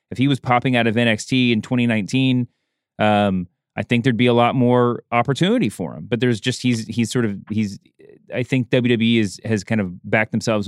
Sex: male